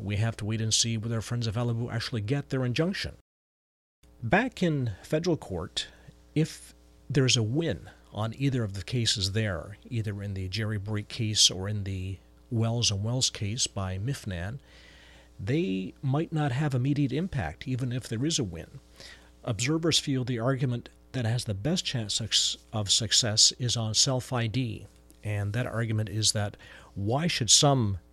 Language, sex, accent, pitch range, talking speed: English, male, American, 100-130 Hz, 165 wpm